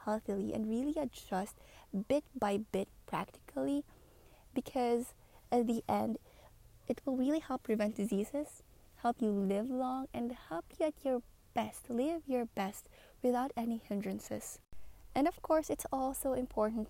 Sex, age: female, 20-39